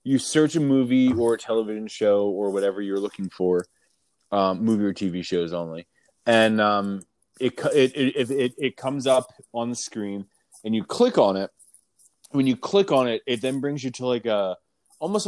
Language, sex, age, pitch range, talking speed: English, male, 20-39, 100-130 Hz, 195 wpm